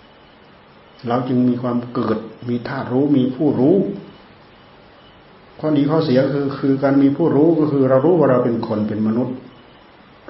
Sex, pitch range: male, 115-145 Hz